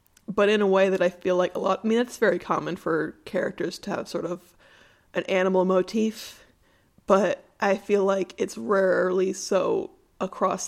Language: English